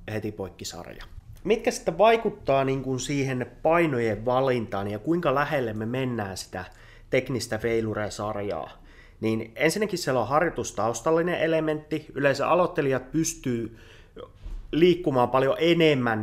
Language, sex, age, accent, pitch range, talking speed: Finnish, male, 30-49, native, 110-150 Hz, 110 wpm